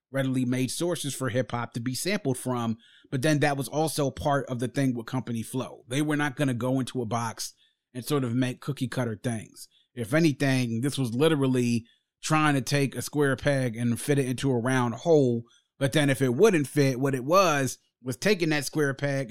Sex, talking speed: male, 220 wpm